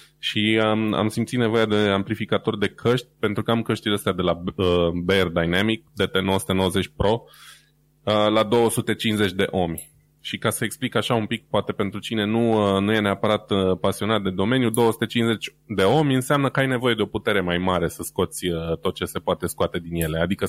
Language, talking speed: Romanian, 200 wpm